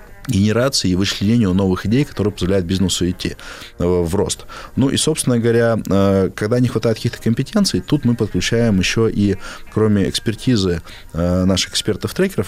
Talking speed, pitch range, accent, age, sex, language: 140 wpm, 95-115 Hz, native, 20-39, male, Russian